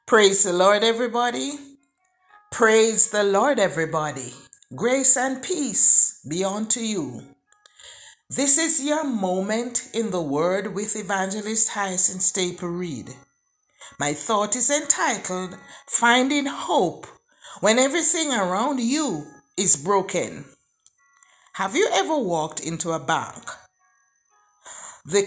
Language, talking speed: English, 110 wpm